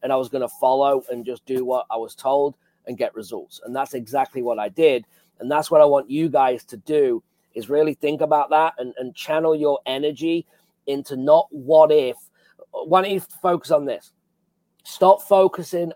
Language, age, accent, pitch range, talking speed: English, 40-59, British, 145-190 Hz, 200 wpm